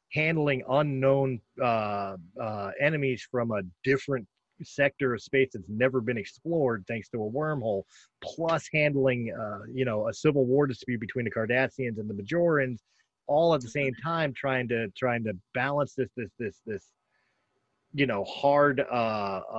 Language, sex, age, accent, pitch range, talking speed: English, male, 30-49, American, 110-140 Hz, 160 wpm